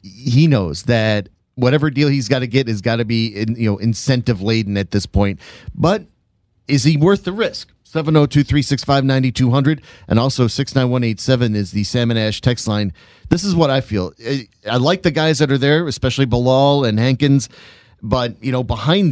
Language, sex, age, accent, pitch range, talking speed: English, male, 40-59, American, 115-150 Hz, 215 wpm